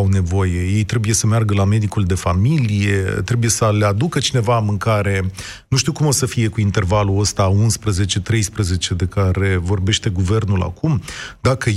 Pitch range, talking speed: 105-135 Hz, 165 wpm